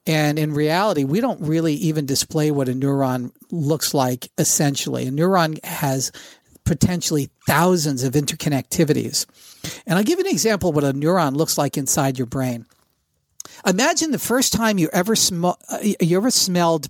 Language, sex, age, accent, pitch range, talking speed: English, male, 50-69, American, 145-185 Hz, 155 wpm